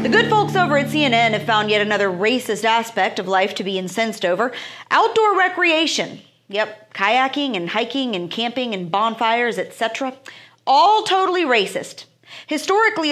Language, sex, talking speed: English, female, 150 wpm